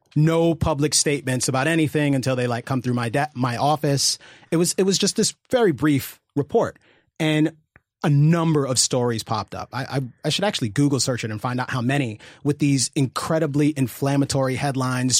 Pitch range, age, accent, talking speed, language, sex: 125-150 Hz, 30-49, American, 190 wpm, English, male